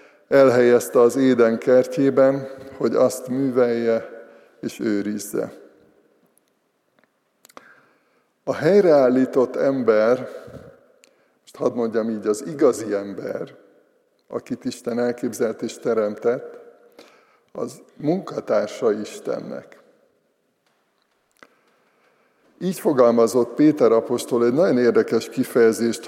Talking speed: 80 wpm